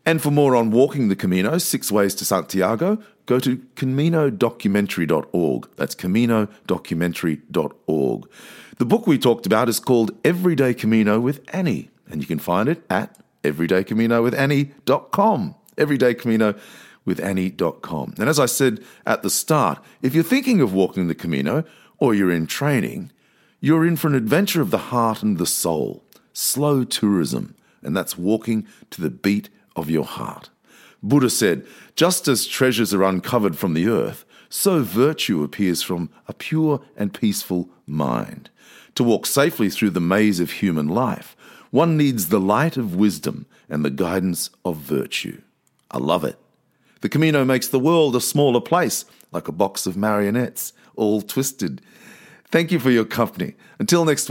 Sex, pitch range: male, 100-150 Hz